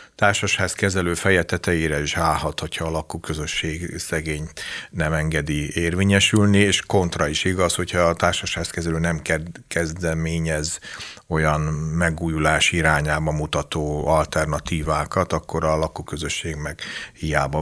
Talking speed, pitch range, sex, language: 110 wpm, 75-85 Hz, male, Hungarian